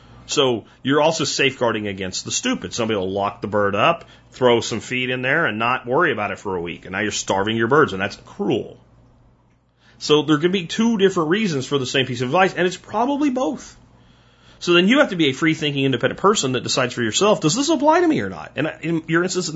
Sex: male